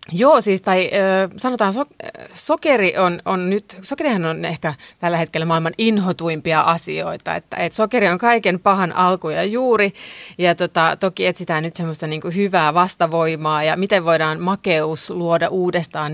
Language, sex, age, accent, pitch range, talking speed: Finnish, female, 30-49, native, 160-205 Hz, 155 wpm